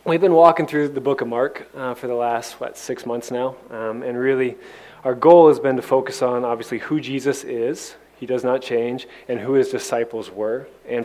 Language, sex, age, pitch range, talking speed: English, male, 20-39, 110-130 Hz, 215 wpm